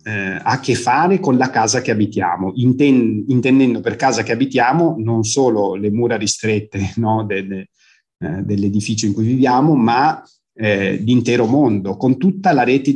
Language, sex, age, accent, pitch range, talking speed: Italian, male, 30-49, native, 110-130 Hz, 155 wpm